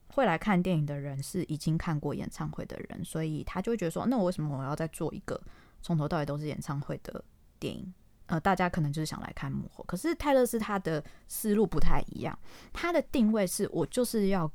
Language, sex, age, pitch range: Chinese, female, 20-39, 155-210 Hz